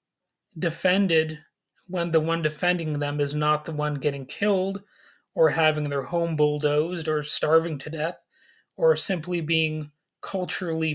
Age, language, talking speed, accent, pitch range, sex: 30-49, English, 135 wpm, American, 155-185 Hz, male